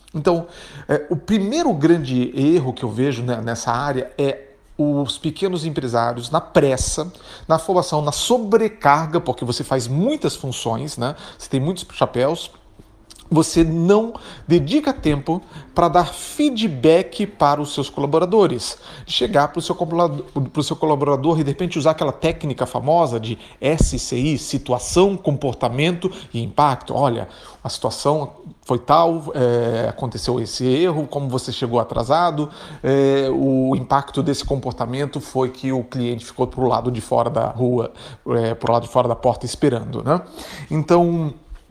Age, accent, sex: 40-59, Brazilian, male